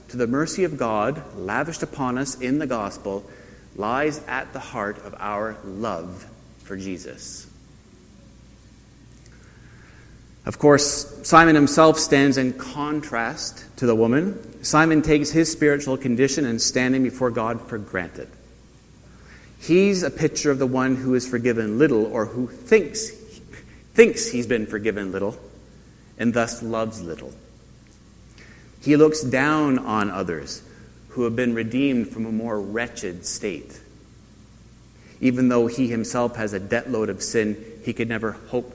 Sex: male